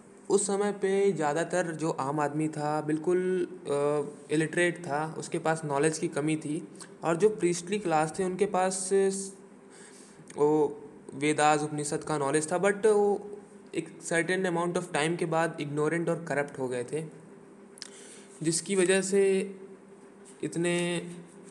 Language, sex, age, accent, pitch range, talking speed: Hindi, male, 20-39, native, 145-185 Hz, 135 wpm